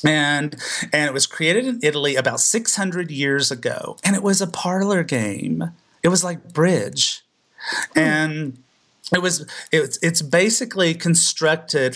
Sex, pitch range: male, 140-180 Hz